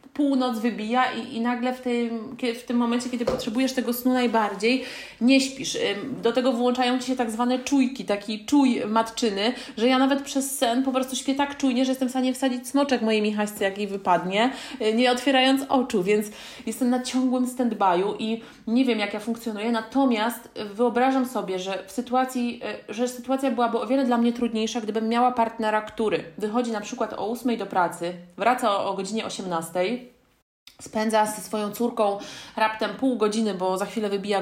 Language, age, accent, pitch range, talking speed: Polish, 30-49, native, 200-245 Hz, 180 wpm